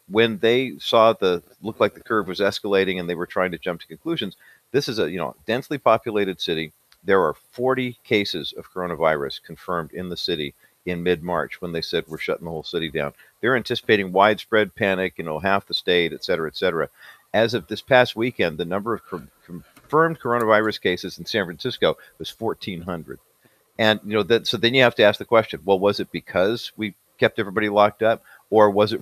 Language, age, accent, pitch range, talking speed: English, 50-69, American, 95-115 Hz, 210 wpm